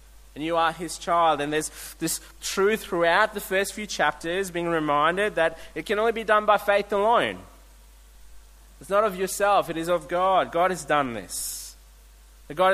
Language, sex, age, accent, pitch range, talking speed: English, male, 30-49, Australian, 130-190 Hz, 180 wpm